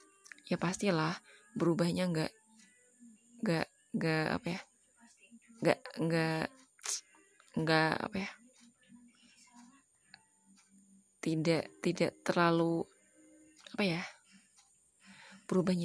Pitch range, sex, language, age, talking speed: 165-210 Hz, female, Indonesian, 20-39, 70 wpm